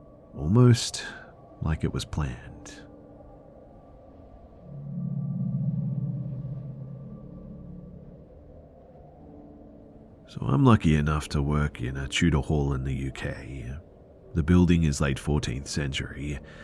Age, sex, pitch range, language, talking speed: 40-59, male, 70-95 Hz, English, 85 wpm